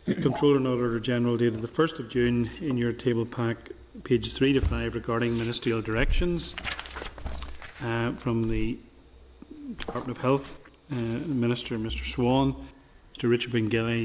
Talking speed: 145 wpm